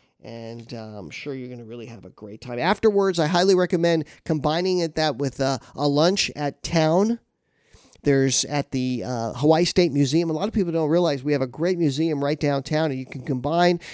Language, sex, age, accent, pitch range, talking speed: English, male, 40-59, American, 130-165 Hz, 210 wpm